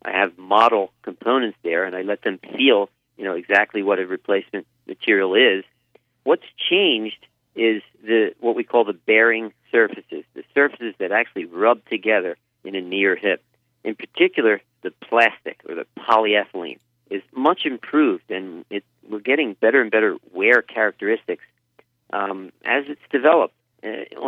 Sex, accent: male, American